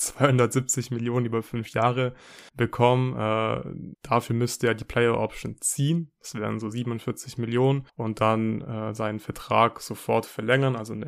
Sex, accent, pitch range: male, German, 110-125 Hz